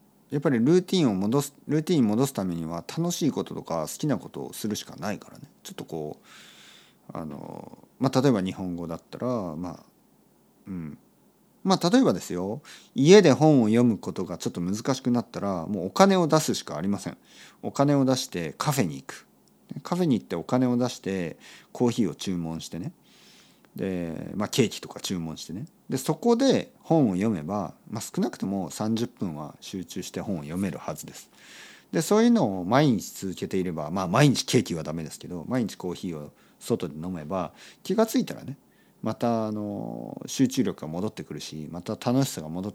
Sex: male